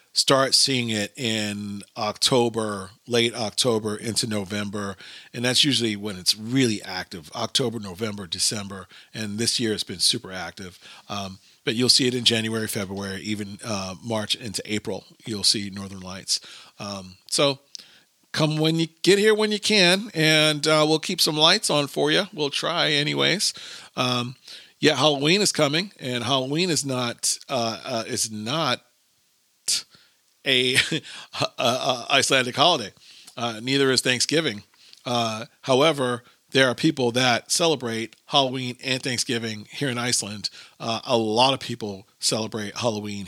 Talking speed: 145 wpm